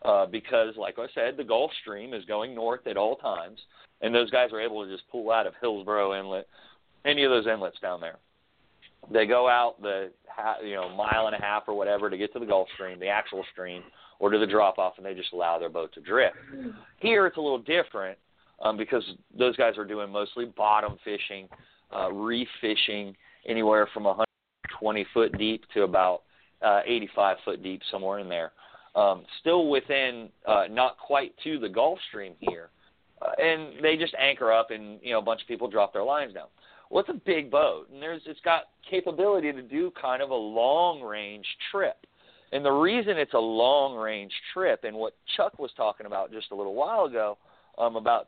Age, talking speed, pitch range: 40-59, 205 wpm, 105-145 Hz